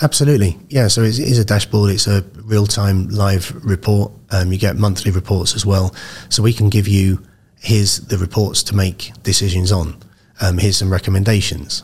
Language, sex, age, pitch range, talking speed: Arabic, male, 30-49, 95-110 Hz, 175 wpm